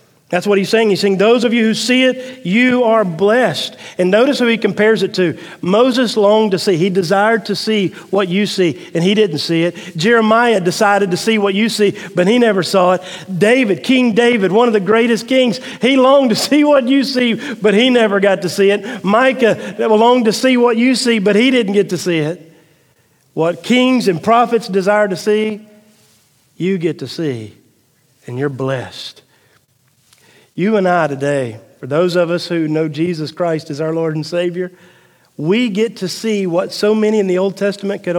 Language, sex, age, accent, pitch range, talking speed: English, male, 40-59, American, 170-220 Hz, 205 wpm